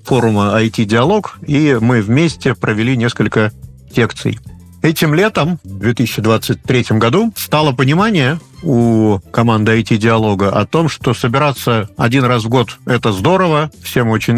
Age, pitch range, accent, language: 50-69, 110-140 Hz, native, Russian